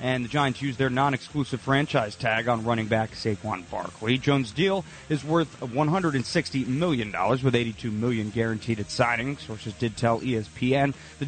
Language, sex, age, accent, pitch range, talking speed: English, male, 30-49, American, 115-140 Hz, 160 wpm